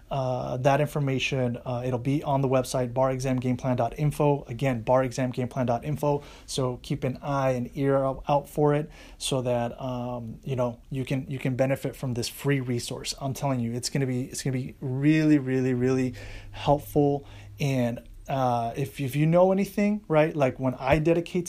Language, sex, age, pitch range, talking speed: English, male, 30-49, 125-145 Hz, 200 wpm